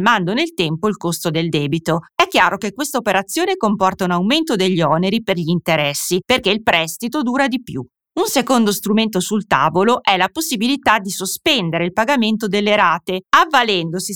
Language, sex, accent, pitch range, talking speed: Italian, female, native, 175-245 Hz, 175 wpm